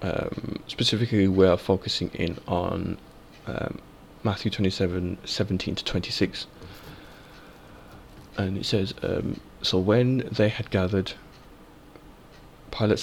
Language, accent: English, British